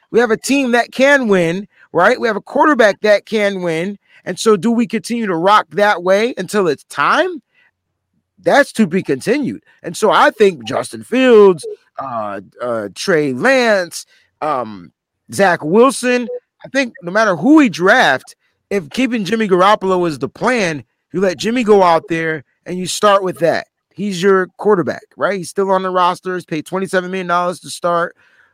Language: English